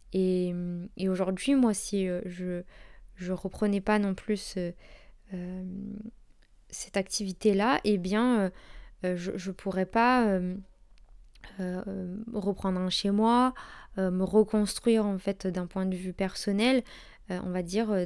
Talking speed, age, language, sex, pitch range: 135 wpm, 20-39, French, female, 190-220 Hz